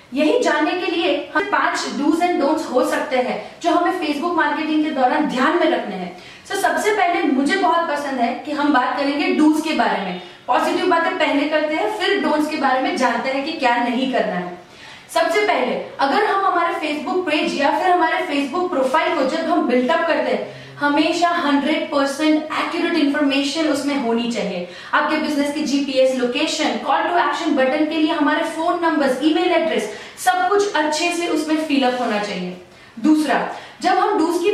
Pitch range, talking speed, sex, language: 275-335 Hz, 190 wpm, female, Hindi